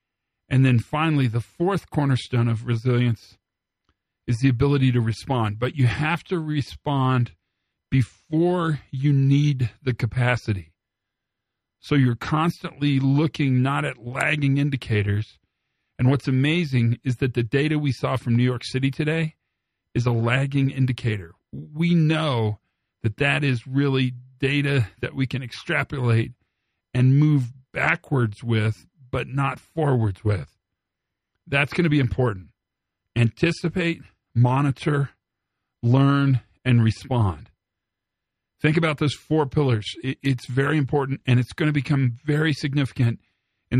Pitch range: 115-145 Hz